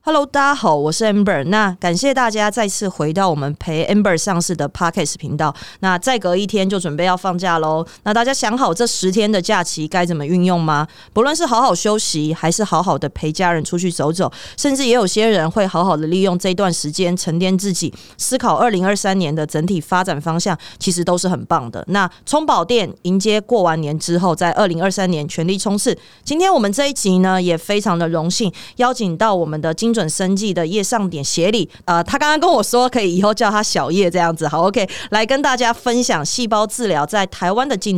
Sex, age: female, 30-49